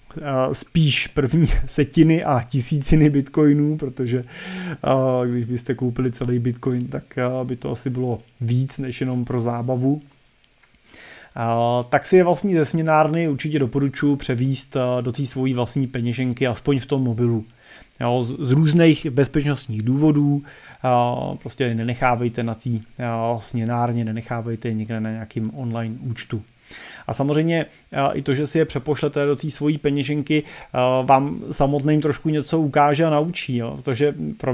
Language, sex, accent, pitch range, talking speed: Czech, male, native, 125-145 Hz, 130 wpm